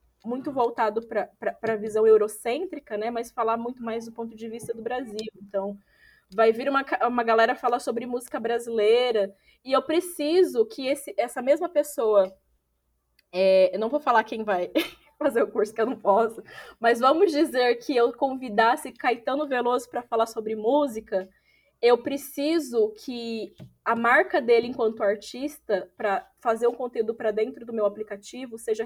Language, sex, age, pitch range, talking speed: Portuguese, female, 10-29, 220-285 Hz, 165 wpm